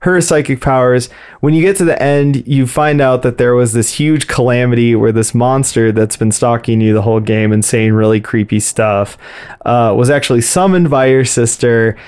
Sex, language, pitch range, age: male, English, 115-135 Hz, 20-39